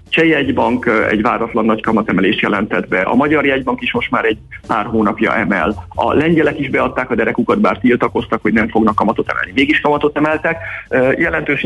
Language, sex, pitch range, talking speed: Hungarian, male, 120-165 Hz, 185 wpm